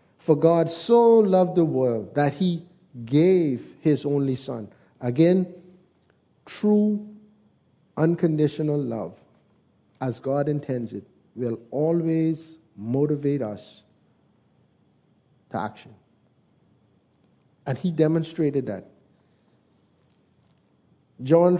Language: English